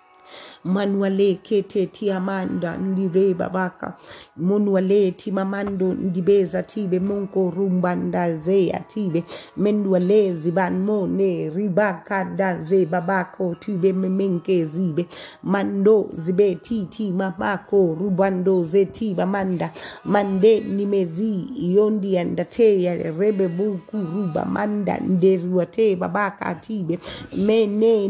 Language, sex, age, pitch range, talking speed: English, female, 30-49, 185-210 Hz, 105 wpm